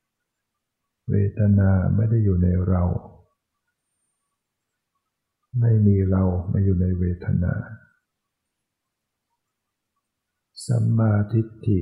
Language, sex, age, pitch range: Thai, male, 60-79, 95-115 Hz